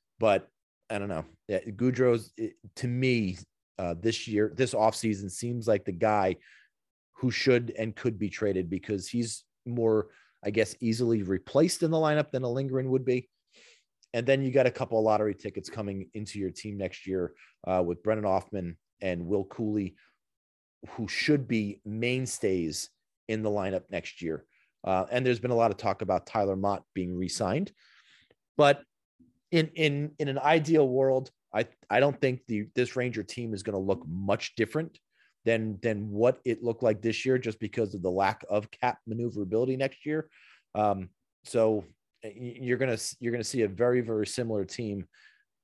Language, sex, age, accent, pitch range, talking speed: English, male, 30-49, American, 100-125 Hz, 175 wpm